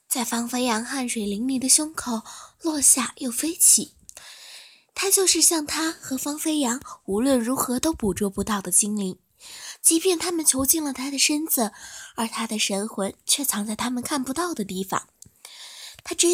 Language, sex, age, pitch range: Chinese, female, 20-39, 220-315 Hz